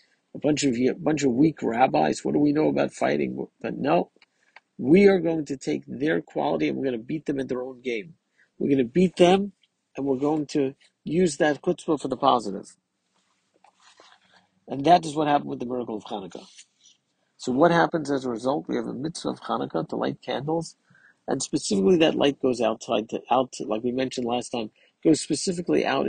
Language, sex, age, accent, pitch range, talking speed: English, male, 50-69, American, 120-160 Hz, 205 wpm